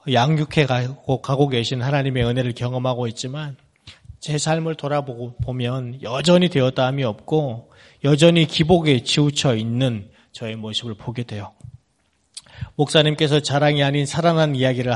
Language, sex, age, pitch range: Korean, male, 30-49, 115-145 Hz